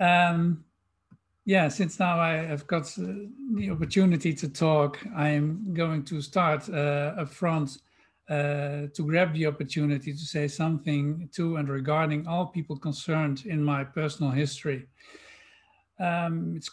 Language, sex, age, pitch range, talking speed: English, male, 50-69, 145-170 Hz, 140 wpm